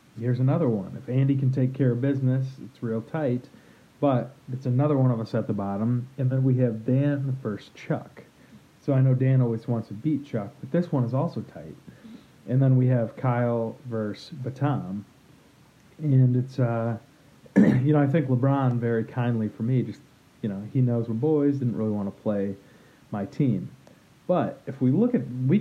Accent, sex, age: American, male, 40-59